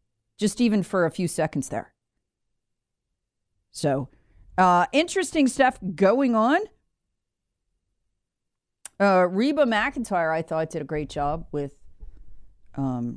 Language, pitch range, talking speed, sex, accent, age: English, 135-180 Hz, 110 wpm, female, American, 40-59